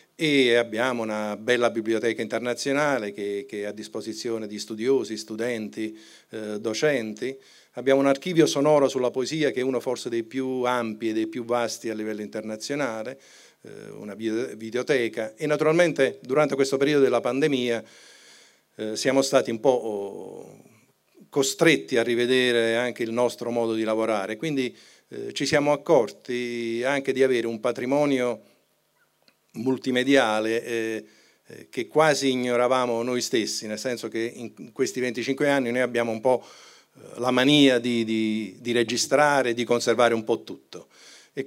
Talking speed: 145 wpm